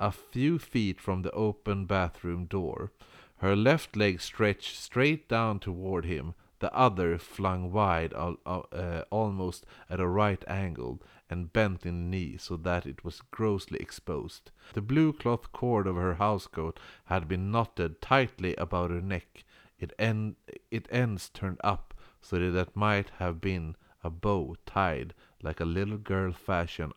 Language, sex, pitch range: Swedish, male, 90-110 Hz